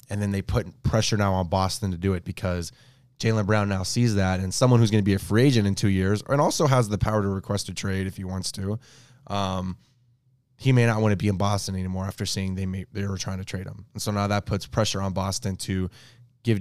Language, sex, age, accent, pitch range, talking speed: English, male, 20-39, American, 95-115 Hz, 260 wpm